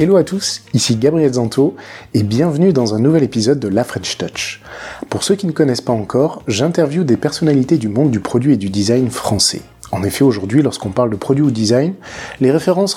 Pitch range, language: 115-150 Hz, French